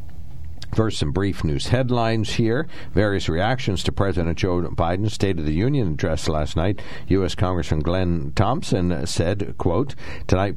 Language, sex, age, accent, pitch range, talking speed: English, male, 60-79, American, 75-100 Hz, 150 wpm